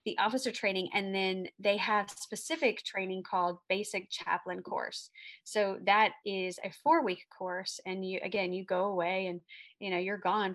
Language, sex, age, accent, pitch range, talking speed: English, female, 30-49, American, 185-215 Hz, 175 wpm